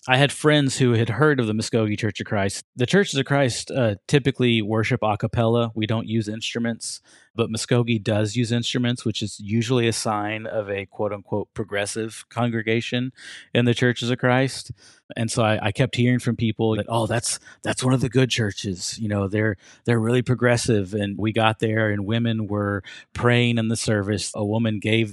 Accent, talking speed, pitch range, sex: American, 195 wpm, 100-120 Hz, male